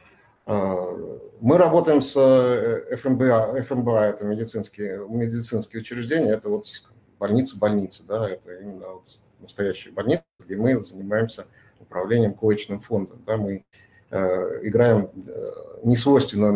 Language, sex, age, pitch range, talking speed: Russian, male, 50-69, 110-135 Hz, 110 wpm